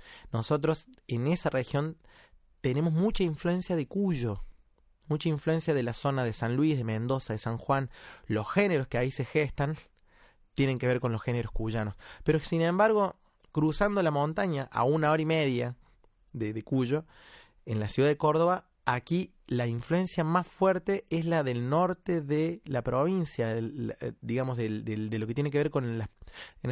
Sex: male